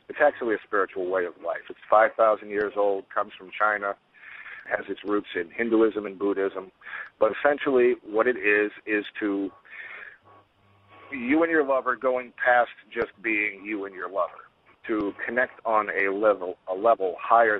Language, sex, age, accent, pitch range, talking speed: English, male, 50-69, American, 100-135 Hz, 165 wpm